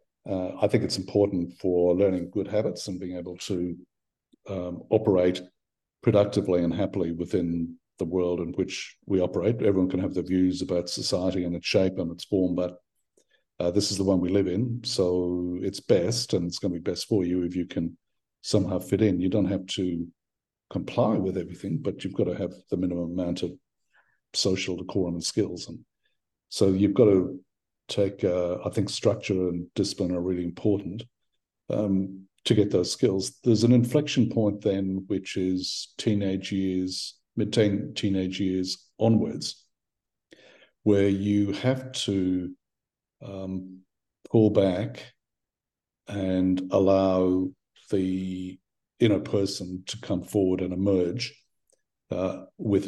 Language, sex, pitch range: English, male, 90-100 Hz